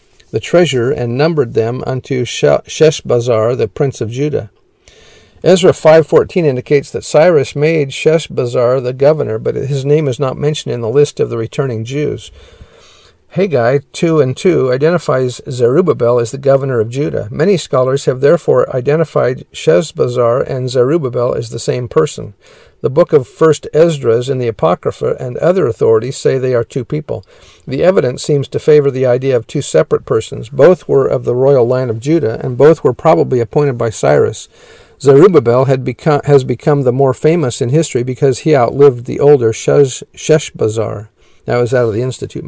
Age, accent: 50-69, American